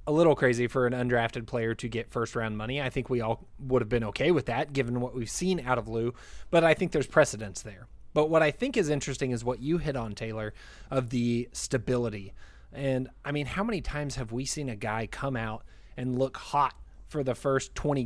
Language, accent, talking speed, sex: English, American, 235 wpm, male